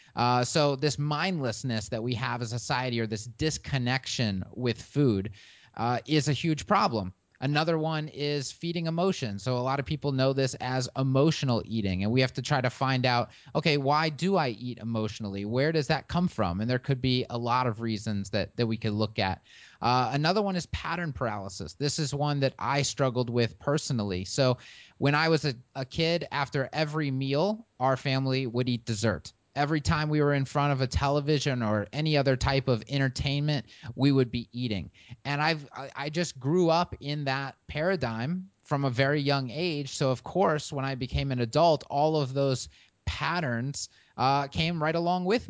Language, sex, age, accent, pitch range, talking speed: English, male, 30-49, American, 120-150 Hz, 195 wpm